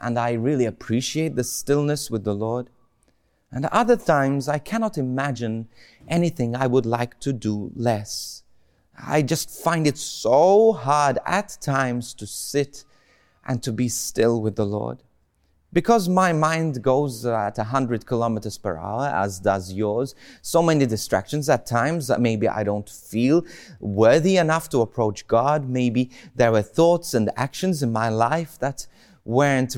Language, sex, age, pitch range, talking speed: English, male, 30-49, 115-160 Hz, 155 wpm